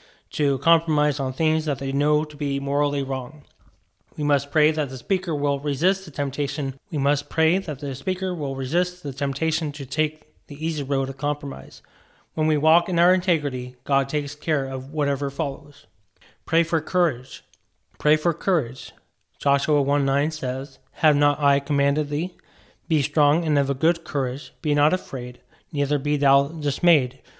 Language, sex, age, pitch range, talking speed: English, male, 30-49, 140-160 Hz, 175 wpm